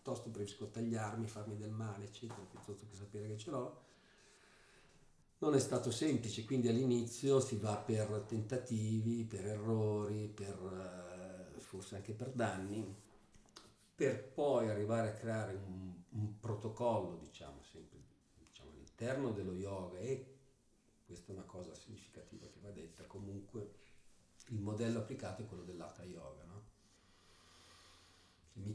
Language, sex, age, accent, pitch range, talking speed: Italian, male, 50-69, native, 95-115 Hz, 135 wpm